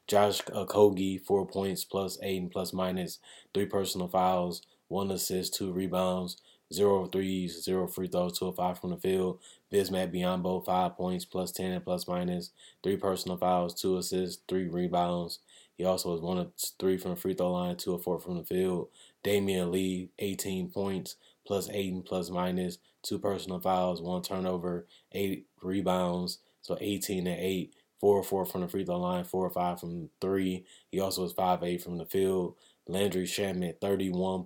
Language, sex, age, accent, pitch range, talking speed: English, male, 20-39, American, 90-95 Hz, 170 wpm